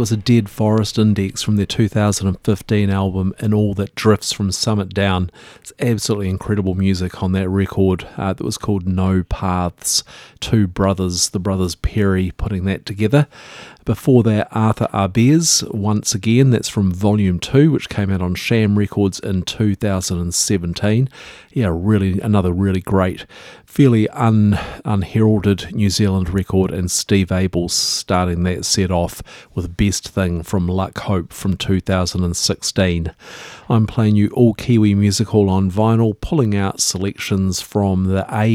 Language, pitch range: English, 95-110 Hz